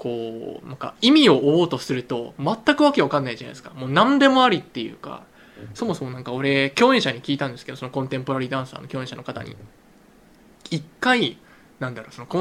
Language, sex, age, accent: Japanese, male, 20-39, native